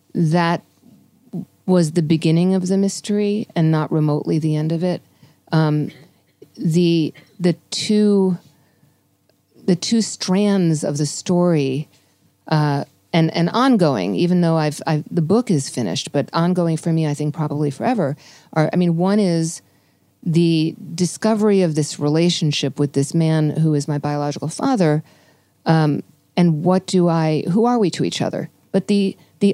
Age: 40-59